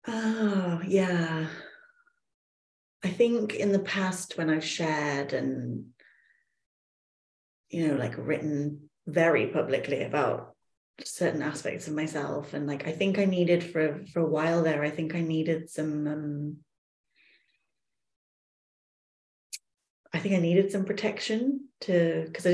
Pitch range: 150-180 Hz